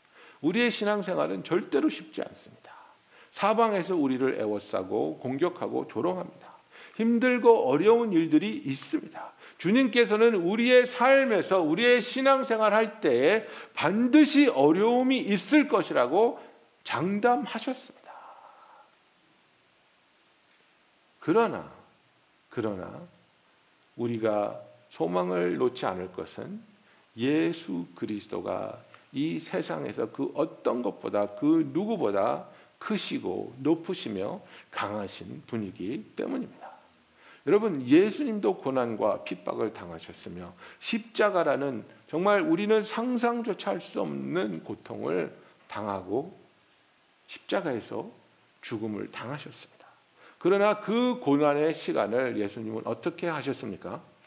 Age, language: 50-69, Korean